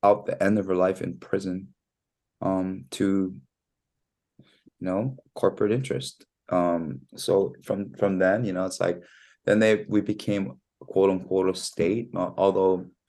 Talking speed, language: 150 wpm, English